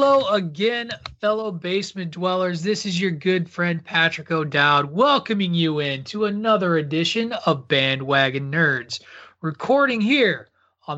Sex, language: male, English